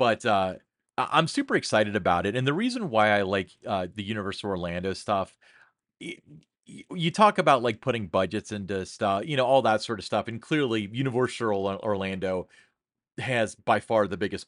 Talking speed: 180 wpm